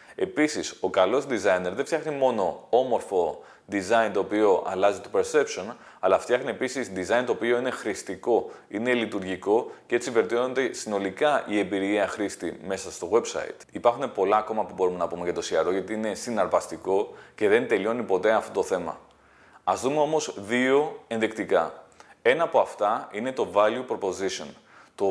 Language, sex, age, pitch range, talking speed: Greek, male, 30-49, 115-175 Hz, 160 wpm